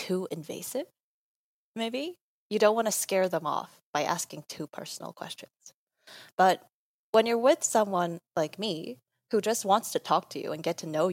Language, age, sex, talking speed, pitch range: English, 10-29, female, 180 wpm, 165-215 Hz